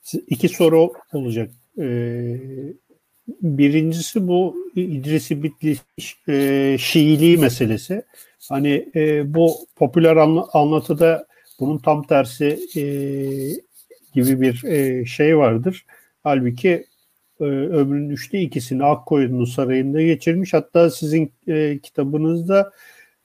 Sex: male